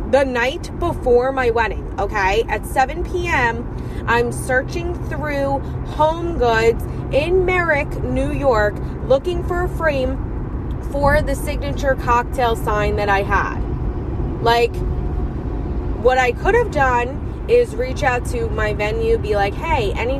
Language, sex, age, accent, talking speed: English, female, 20-39, American, 135 wpm